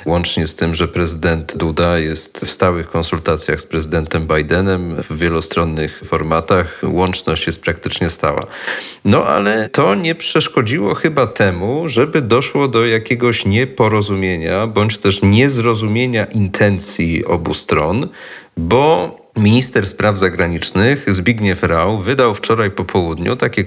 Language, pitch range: Polish, 90-120 Hz